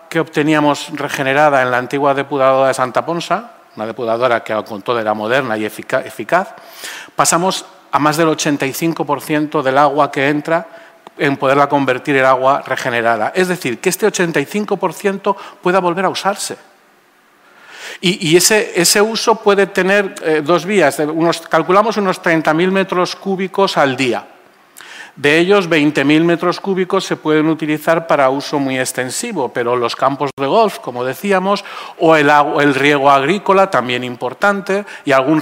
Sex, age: male, 40-59